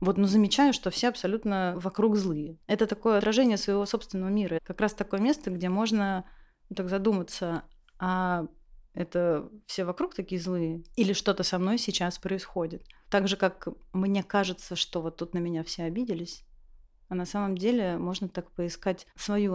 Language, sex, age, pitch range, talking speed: Russian, female, 30-49, 180-205 Hz, 170 wpm